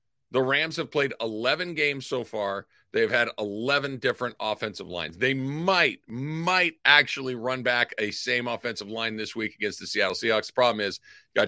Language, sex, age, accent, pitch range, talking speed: English, male, 50-69, American, 120-165 Hz, 190 wpm